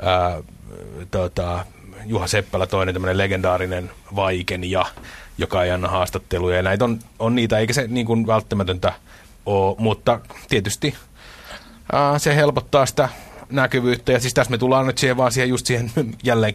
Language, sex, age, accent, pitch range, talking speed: Finnish, male, 30-49, native, 95-120 Hz, 140 wpm